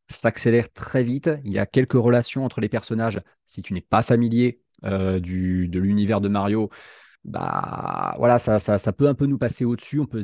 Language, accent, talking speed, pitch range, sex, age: French, French, 205 wpm, 100-120 Hz, male, 20-39